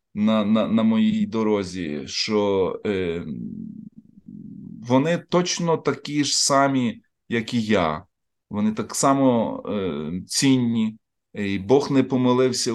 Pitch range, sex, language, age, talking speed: 110-150 Hz, male, Ukrainian, 30-49, 120 wpm